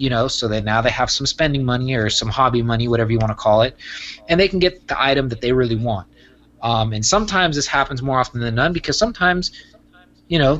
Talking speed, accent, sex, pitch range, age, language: 245 wpm, American, male, 110-135 Hz, 20-39, English